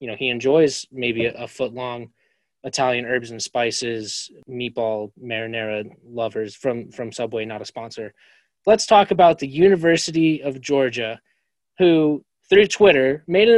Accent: American